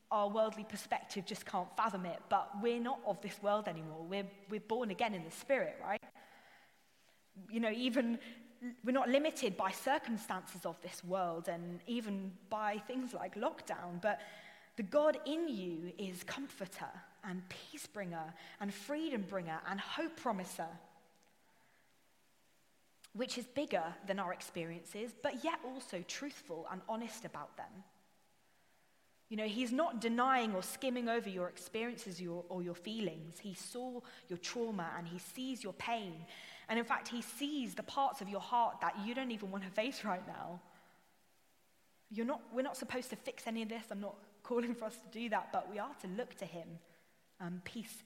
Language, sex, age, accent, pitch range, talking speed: English, female, 20-39, British, 185-240 Hz, 170 wpm